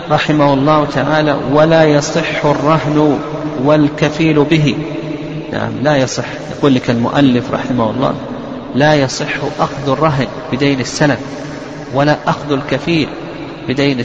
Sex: male